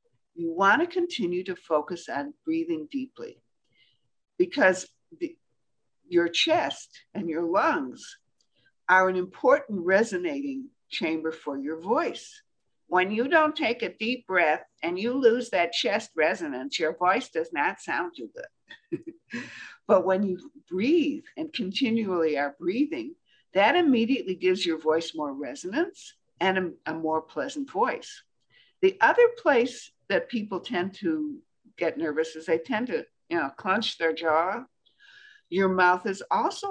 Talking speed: 140 wpm